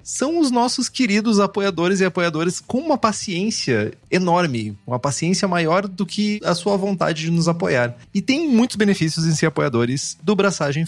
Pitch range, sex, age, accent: 160-205 Hz, male, 30-49, Brazilian